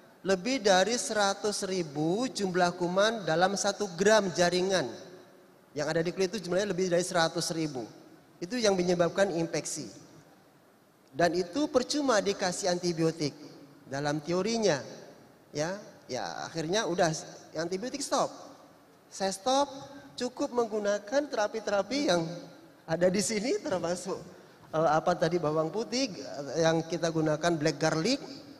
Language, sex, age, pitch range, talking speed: Indonesian, male, 30-49, 155-195 Hz, 120 wpm